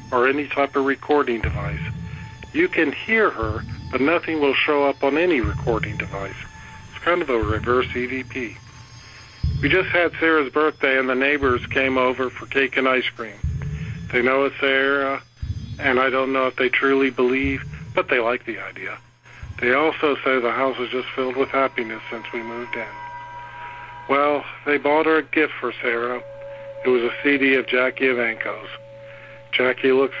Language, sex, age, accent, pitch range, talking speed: English, male, 50-69, American, 120-140 Hz, 175 wpm